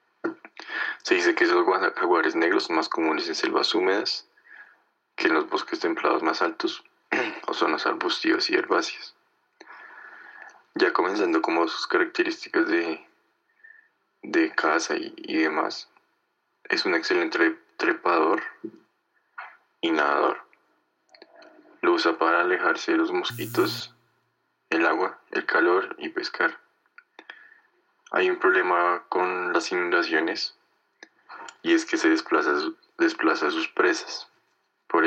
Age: 20-39